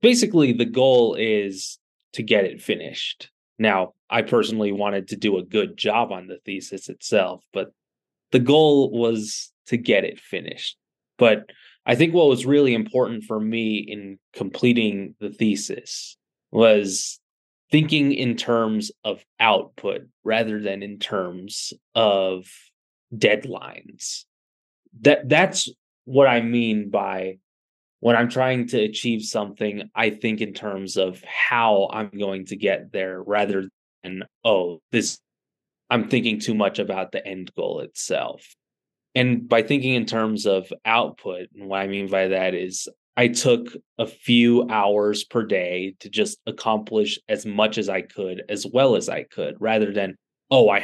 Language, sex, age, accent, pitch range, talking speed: English, male, 20-39, American, 100-120 Hz, 150 wpm